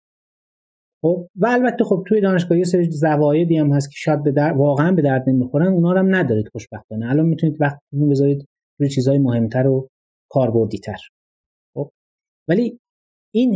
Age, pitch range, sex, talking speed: 30-49, 130-190 Hz, male, 150 wpm